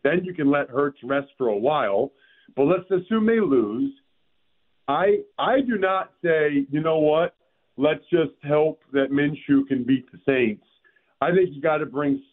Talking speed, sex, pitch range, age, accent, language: 180 wpm, male, 135-170 Hz, 50-69, American, English